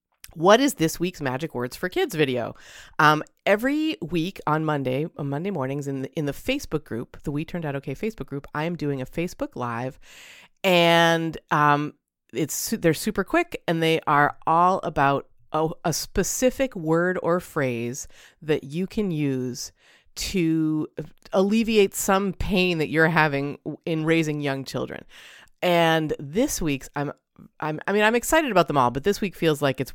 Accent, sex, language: American, female, English